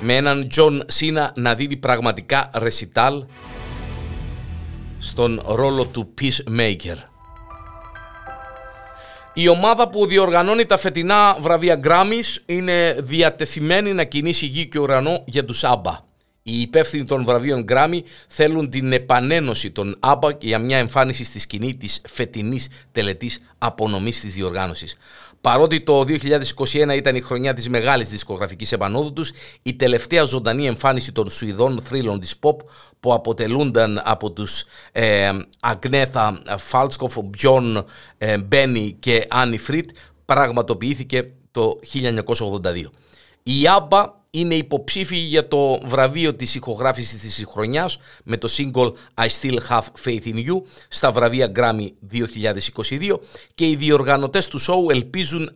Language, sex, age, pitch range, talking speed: Greek, male, 50-69, 115-150 Hz, 125 wpm